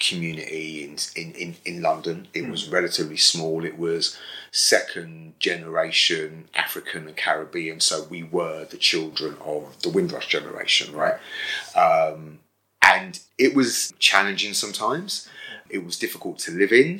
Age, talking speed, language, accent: 30-49, 140 wpm, English, British